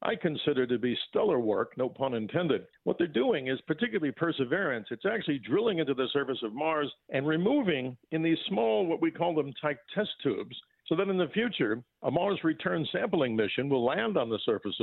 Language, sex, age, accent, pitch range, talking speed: English, male, 50-69, American, 130-170 Hz, 200 wpm